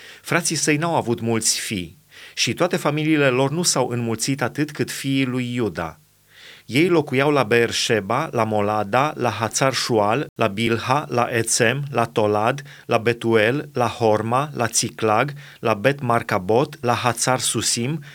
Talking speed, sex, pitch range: 145 wpm, male, 115-145 Hz